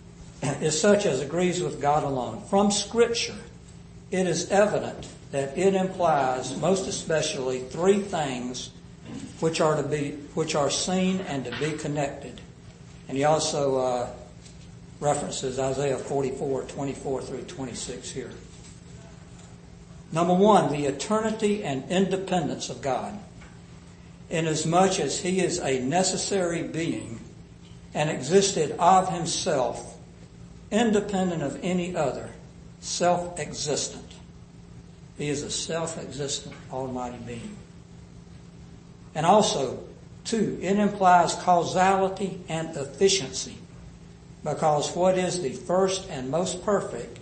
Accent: American